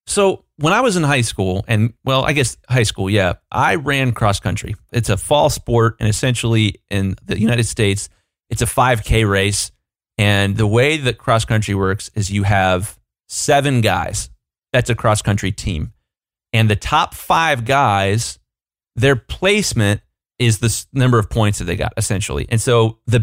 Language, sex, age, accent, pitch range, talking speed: English, male, 30-49, American, 105-135 Hz, 175 wpm